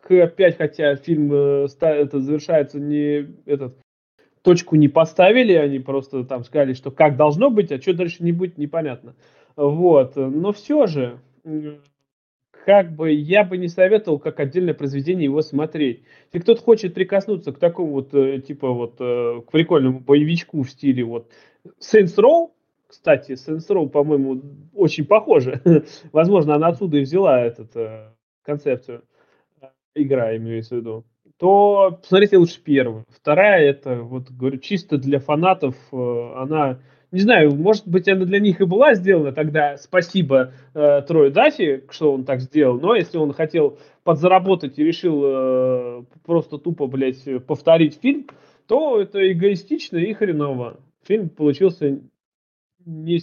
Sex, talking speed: male, 140 wpm